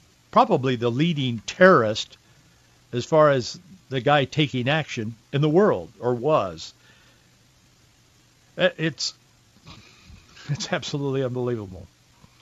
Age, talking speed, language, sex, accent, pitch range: 60-79, 95 wpm, English, male, American, 120-145 Hz